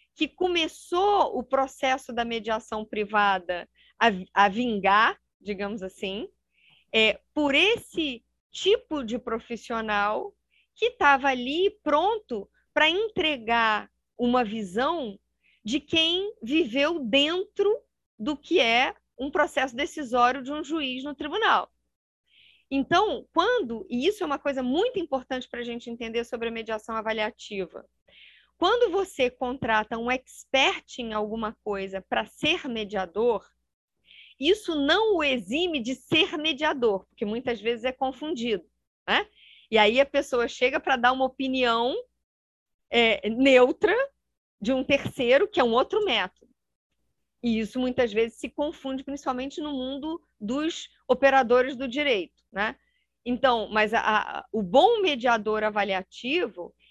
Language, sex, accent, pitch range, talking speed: Portuguese, female, Brazilian, 230-315 Hz, 130 wpm